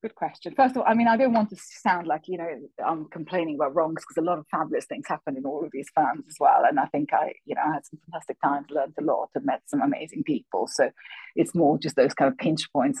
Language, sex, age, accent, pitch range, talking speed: English, female, 30-49, British, 150-185 Hz, 280 wpm